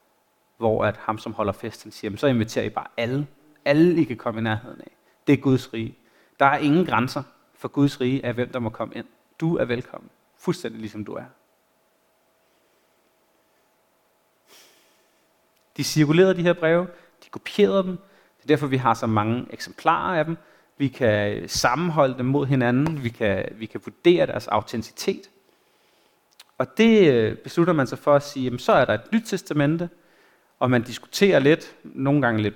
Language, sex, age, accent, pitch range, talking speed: Danish, male, 30-49, native, 120-175 Hz, 180 wpm